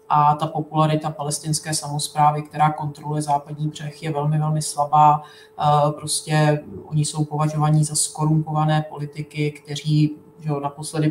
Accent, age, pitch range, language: native, 30-49, 150-155 Hz, Czech